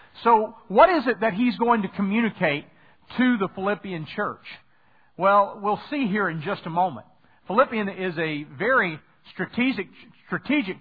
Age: 50-69